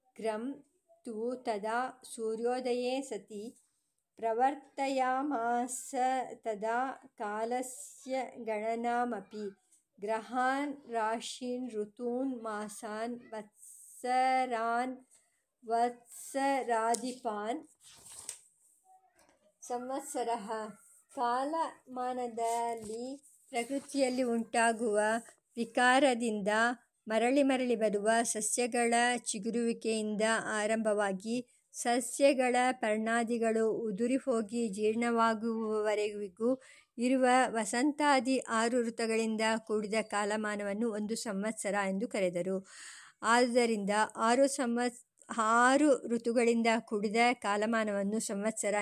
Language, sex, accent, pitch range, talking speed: English, male, Indian, 220-255 Hz, 65 wpm